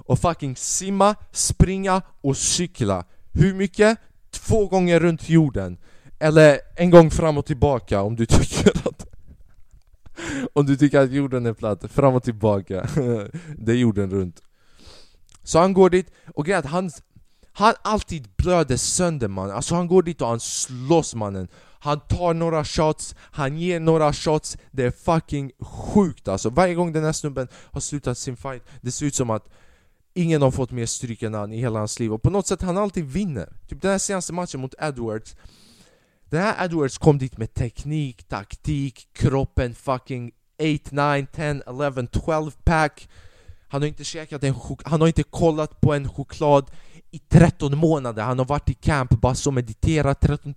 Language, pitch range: Swedish, 115-160 Hz